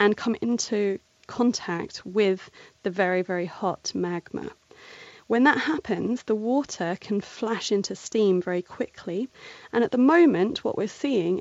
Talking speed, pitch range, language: 145 wpm, 190-245 Hz, English